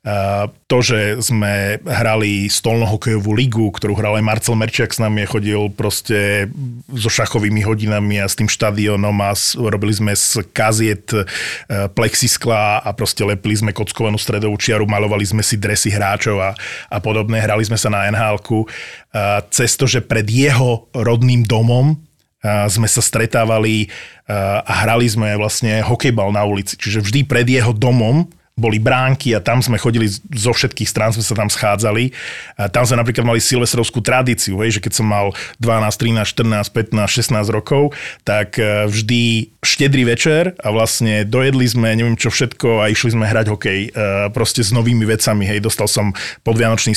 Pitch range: 105-120 Hz